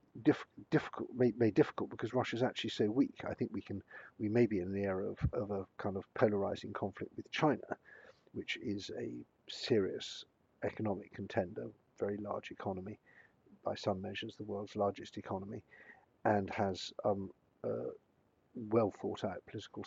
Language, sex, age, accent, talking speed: English, male, 50-69, British, 155 wpm